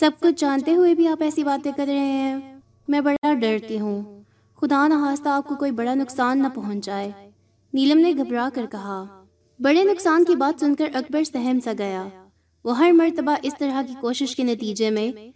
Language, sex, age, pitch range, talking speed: Urdu, female, 20-39, 210-285 Hz, 195 wpm